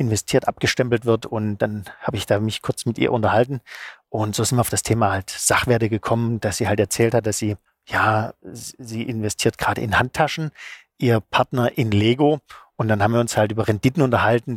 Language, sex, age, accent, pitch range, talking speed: German, male, 40-59, German, 110-130 Hz, 200 wpm